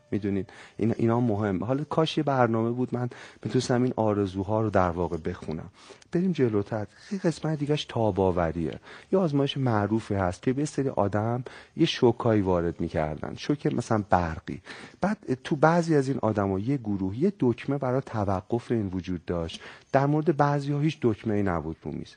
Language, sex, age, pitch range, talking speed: Persian, male, 40-59, 100-145 Hz, 155 wpm